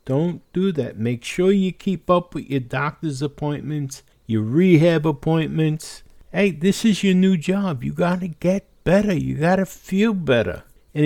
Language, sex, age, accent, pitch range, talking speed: English, male, 60-79, American, 135-190 Hz, 165 wpm